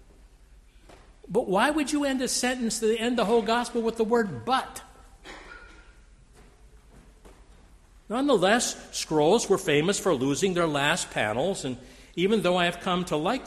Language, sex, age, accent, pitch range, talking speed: English, male, 60-79, American, 130-215 Hz, 145 wpm